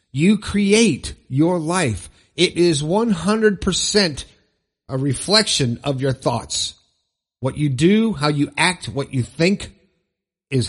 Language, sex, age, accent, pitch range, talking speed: English, male, 50-69, American, 130-180 Hz, 125 wpm